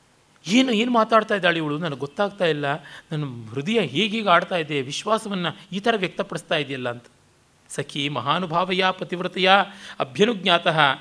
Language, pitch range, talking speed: Kannada, 140-205 Hz, 125 wpm